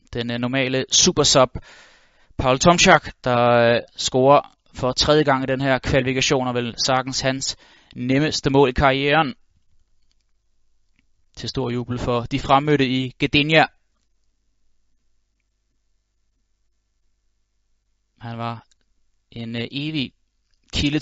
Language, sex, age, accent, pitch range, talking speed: Danish, male, 20-39, native, 120-140 Hz, 110 wpm